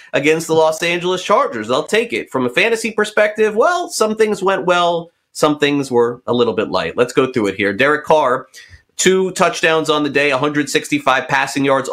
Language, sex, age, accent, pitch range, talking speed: English, male, 30-49, American, 120-160 Hz, 200 wpm